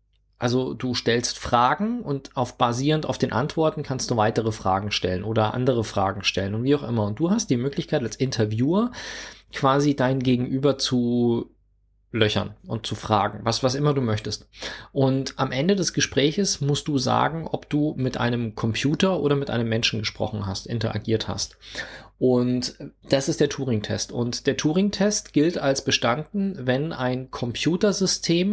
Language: German